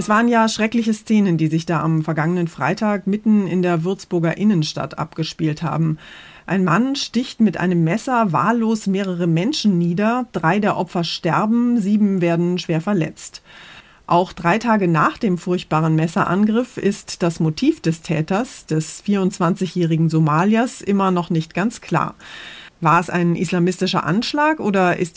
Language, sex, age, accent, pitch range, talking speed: German, female, 30-49, German, 170-220 Hz, 150 wpm